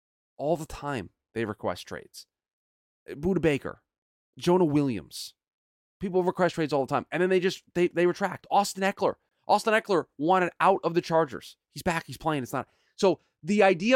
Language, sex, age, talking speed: English, male, 30-49, 175 wpm